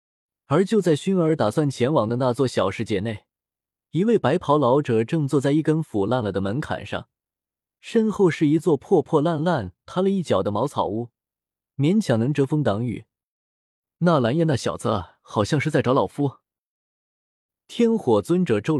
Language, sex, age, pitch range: Chinese, male, 20-39, 115-170 Hz